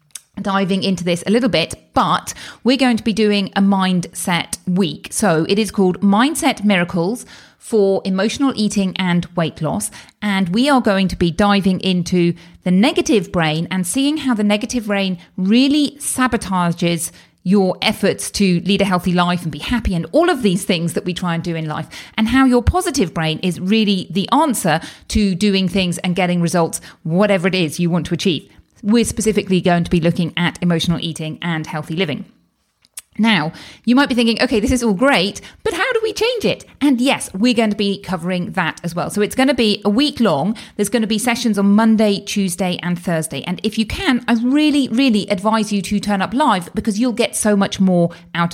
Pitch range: 175-225 Hz